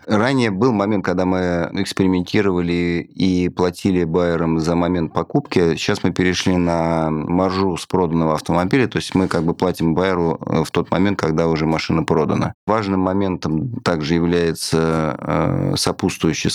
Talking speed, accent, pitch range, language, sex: 140 wpm, native, 80-95 Hz, Russian, male